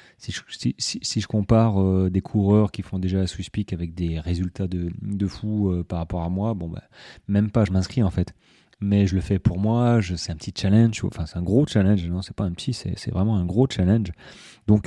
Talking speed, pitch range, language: 240 wpm, 95-115 Hz, French